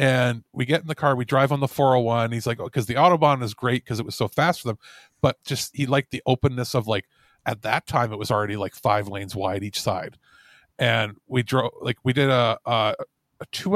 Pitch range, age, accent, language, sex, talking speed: 120-145 Hz, 40-59, American, English, male, 245 wpm